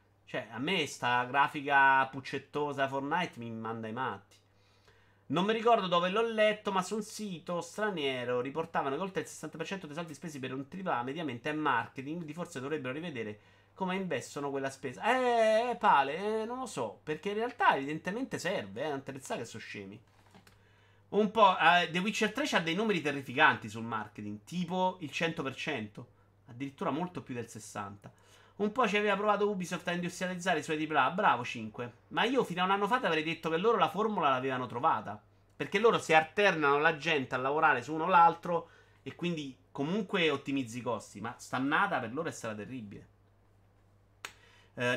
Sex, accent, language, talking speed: male, native, Italian, 180 wpm